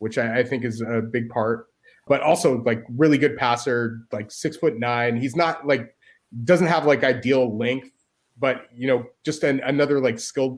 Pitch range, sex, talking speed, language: 115-130 Hz, male, 185 wpm, English